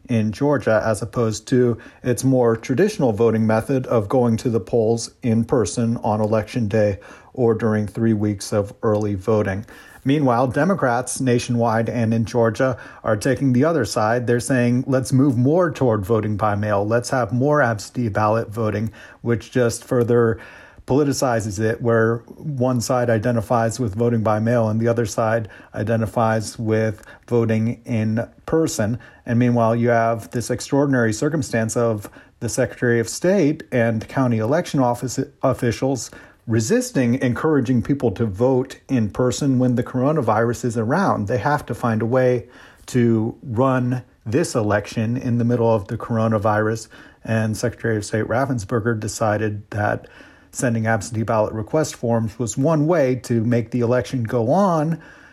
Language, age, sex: English, 50-69, male